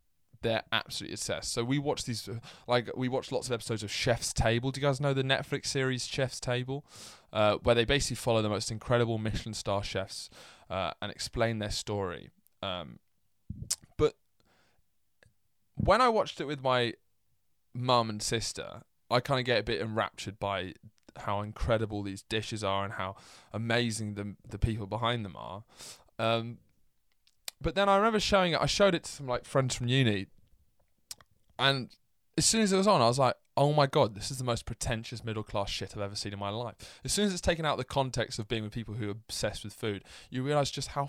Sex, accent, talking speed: male, British, 200 wpm